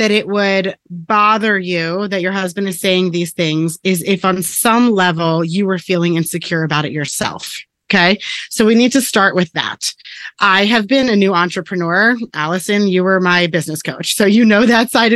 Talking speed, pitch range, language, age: 195 wpm, 175-230 Hz, English, 20-39